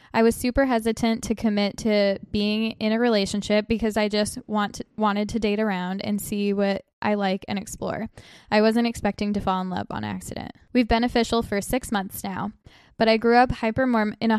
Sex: female